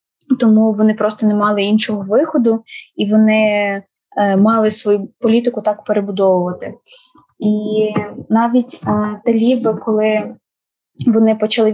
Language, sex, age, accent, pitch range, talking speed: Ukrainian, female, 20-39, native, 200-225 Hz, 100 wpm